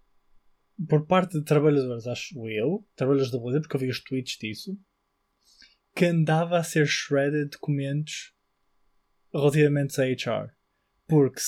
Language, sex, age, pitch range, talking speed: Portuguese, male, 20-39, 125-155 Hz, 115 wpm